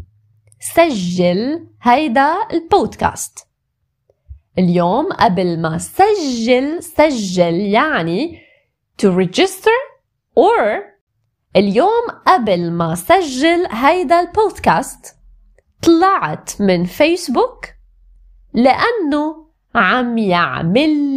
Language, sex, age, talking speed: Arabic, female, 20-39, 70 wpm